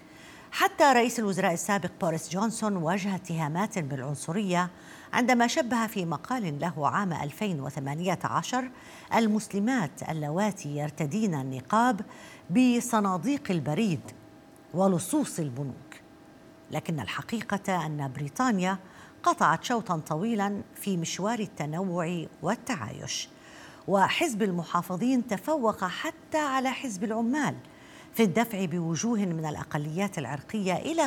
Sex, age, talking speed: female, 50-69, 95 wpm